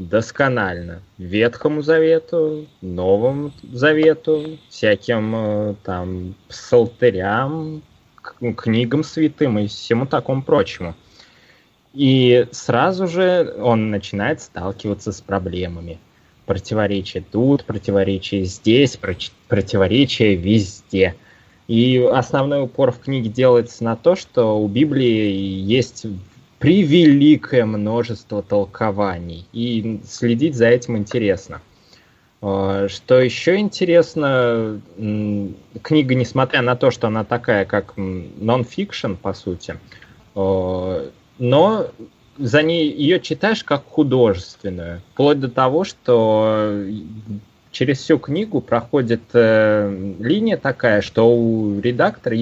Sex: male